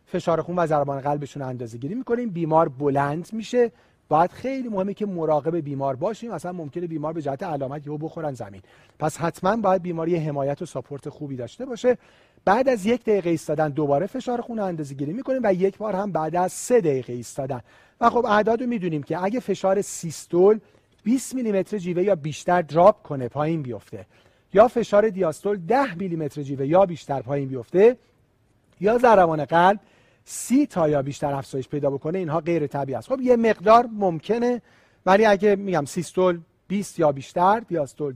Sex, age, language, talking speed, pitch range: male, 40-59, Persian, 180 wpm, 145-205 Hz